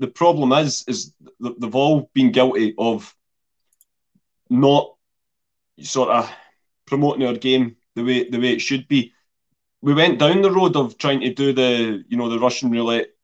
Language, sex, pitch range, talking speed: English, male, 110-130 Hz, 170 wpm